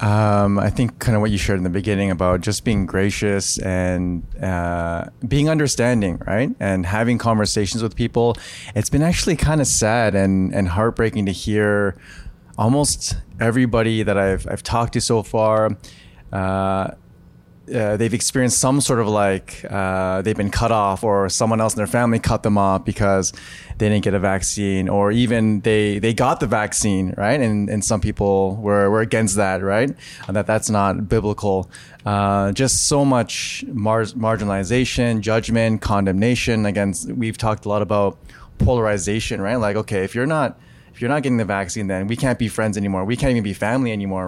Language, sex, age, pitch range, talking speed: English, male, 20-39, 100-115 Hz, 180 wpm